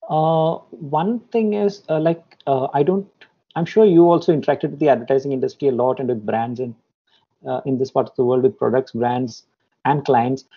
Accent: Indian